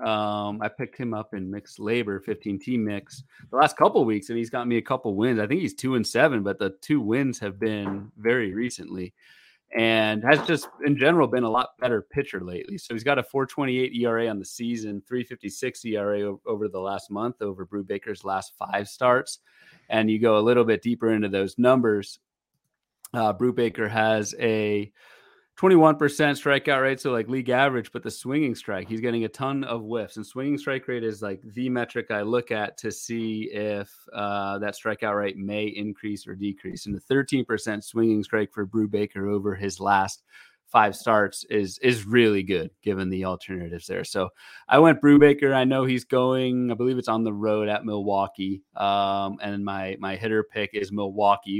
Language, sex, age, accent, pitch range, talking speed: English, male, 30-49, American, 100-120 Hz, 195 wpm